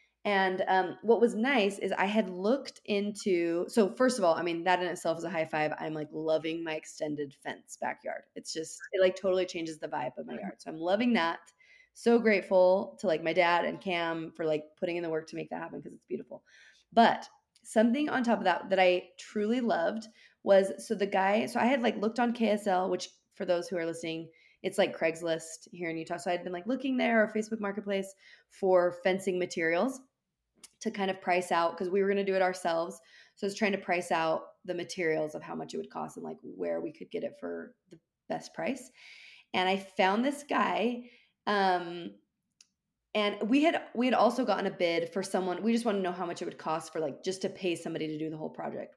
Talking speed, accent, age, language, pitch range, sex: 230 wpm, American, 20-39, English, 170-220 Hz, female